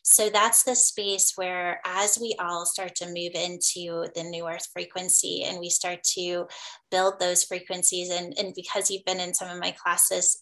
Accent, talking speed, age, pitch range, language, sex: American, 190 wpm, 20-39, 175-200 Hz, English, female